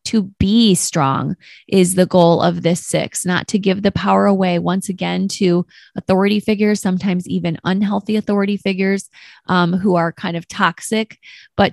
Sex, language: female, English